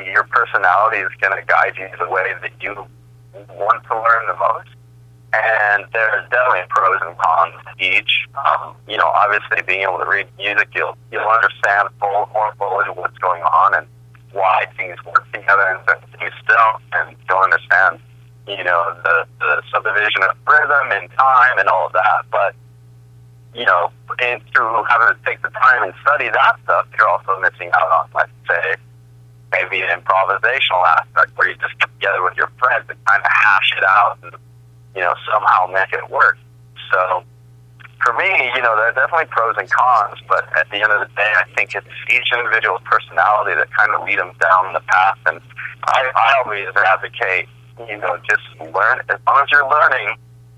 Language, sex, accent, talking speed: English, male, American, 190 wpm